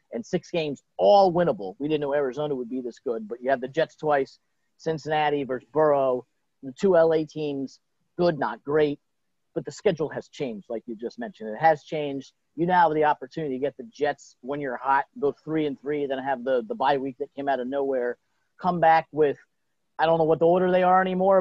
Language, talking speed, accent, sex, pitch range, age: English, 225 wpm, American, male, 130-160 Hz, 40-59